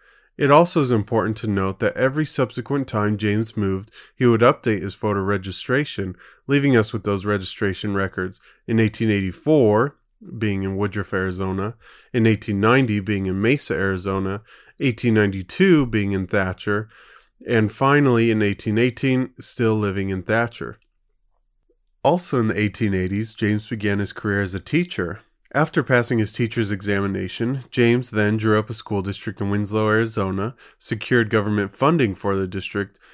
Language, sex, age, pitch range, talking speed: English, male, 30-49, 100-120 Hz, 145 wpm